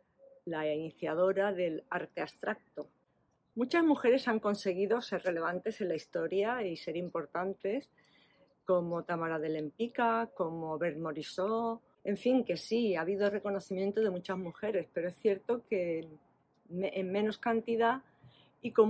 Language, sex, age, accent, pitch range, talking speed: Spanish, female, 40-59, Spanish, 185-225 Hz, 135 wpm